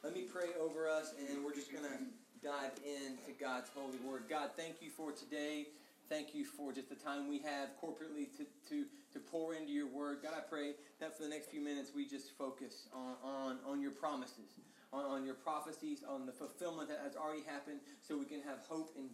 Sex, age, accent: male, 20-39, American